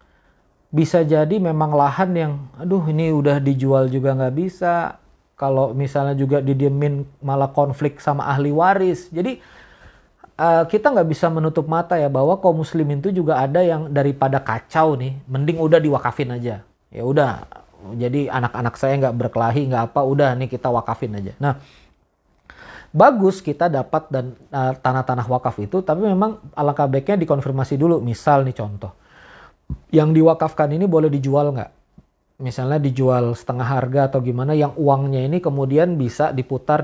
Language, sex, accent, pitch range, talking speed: Indonesian, male, native, 130-160 Hz, 150 wpm